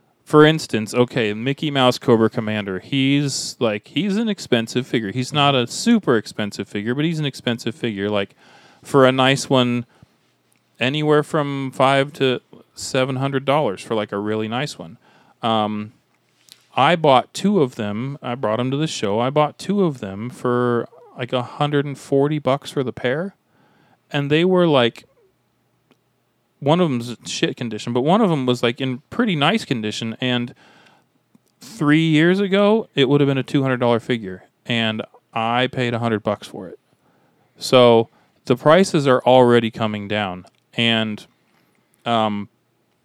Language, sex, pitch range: English, male, 115-145 Hz